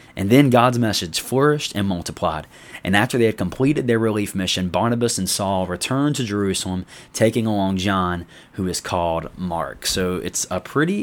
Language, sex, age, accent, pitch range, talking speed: English, male, 20-39, American, 90-115 Hz, 175 wpm